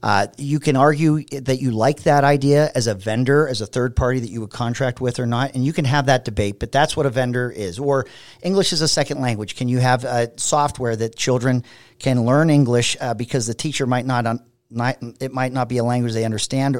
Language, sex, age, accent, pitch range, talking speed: English, male, 40-59, American, 120-145 Hz, 240 wpm